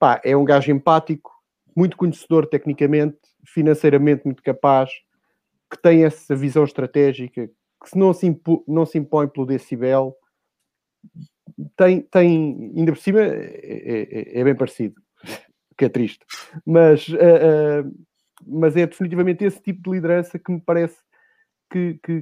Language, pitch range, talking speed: English, 135-165 Hz, 145 wpm